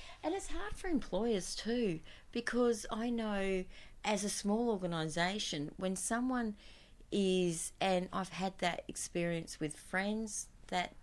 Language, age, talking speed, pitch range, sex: English, 30-49, 130 wpm, 150-185 Hz, female